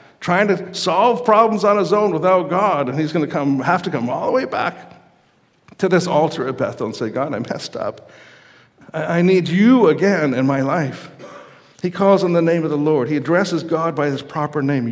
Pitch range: 150-195 Hz